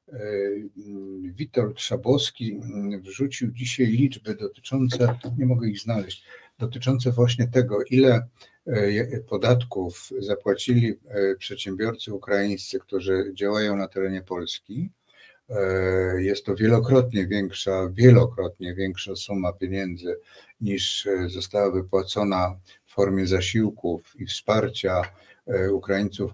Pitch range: 95-115 Hz